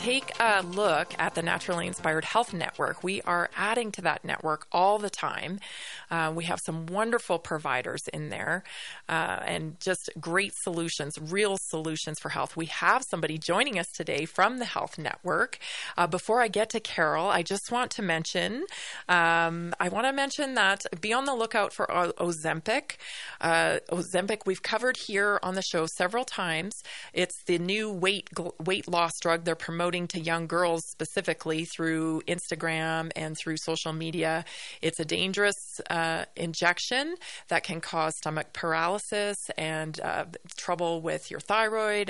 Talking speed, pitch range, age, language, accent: 160 wpm, 165-205 Hz, 20-39, English, American